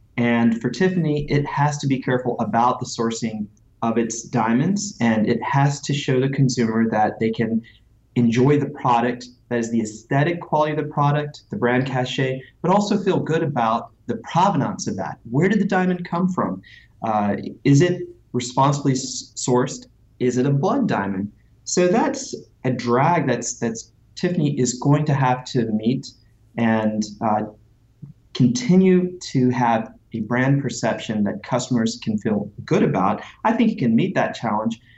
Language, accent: English, American